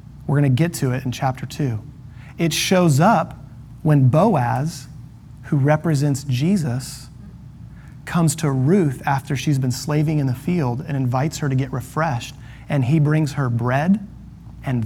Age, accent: 30-49, American